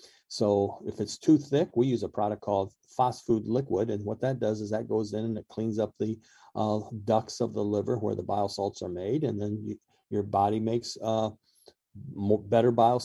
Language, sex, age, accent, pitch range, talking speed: English, male, 50-69, American, 105-130 Hz, 205 wpm